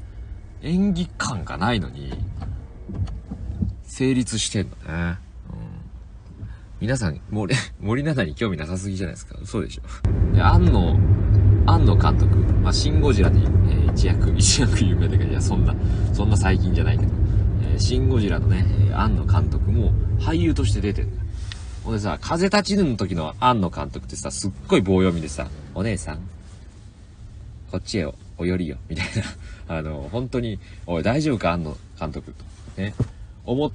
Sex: male